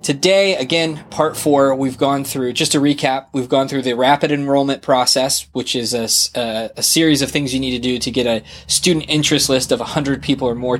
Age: 20-39